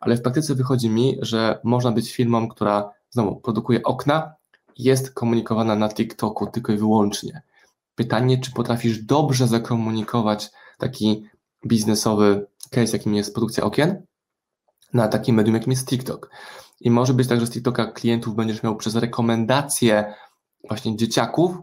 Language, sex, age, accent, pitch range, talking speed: Polish, male, 20-39, native, 110-125 Hz, 145 wpm